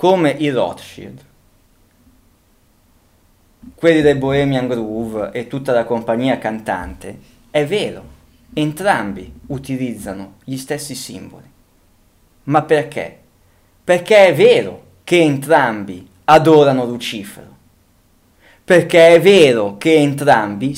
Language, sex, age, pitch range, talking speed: Italian, male, 20-39, 120-165 Hz, 95 wpm